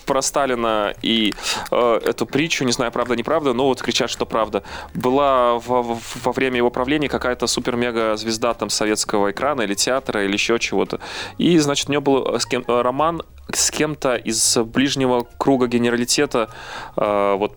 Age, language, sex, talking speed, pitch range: 20-39, Russian, male, 165 wpm, 105-125 Hz